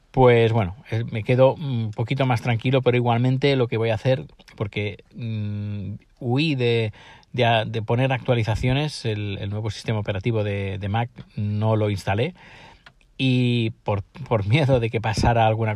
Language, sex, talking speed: Spanish, male, 160 wpm